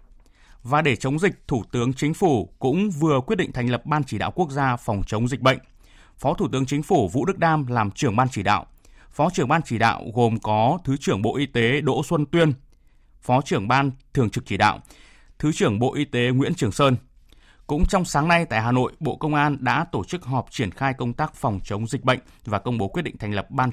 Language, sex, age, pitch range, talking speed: Vietnamese, male, 20-39, 115-150 Hz, 245 wpm